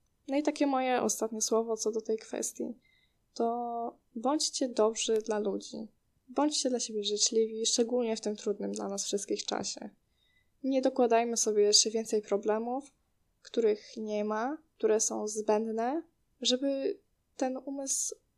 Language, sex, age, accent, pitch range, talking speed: Polish, female, 10-29, native, 220-265 Hz, 135 wpm